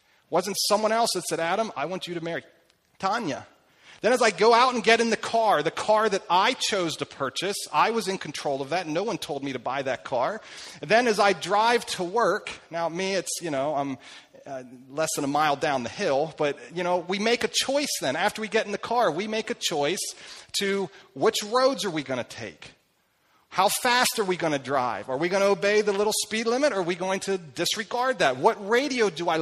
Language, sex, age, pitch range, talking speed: English, male, 40-59, 165-220 Hz, 235 wpm